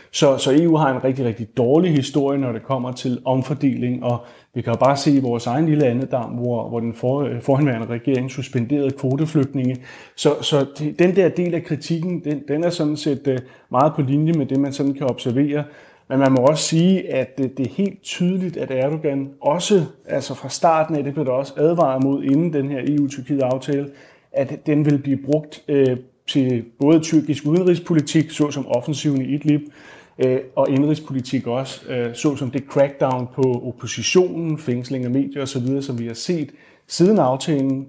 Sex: male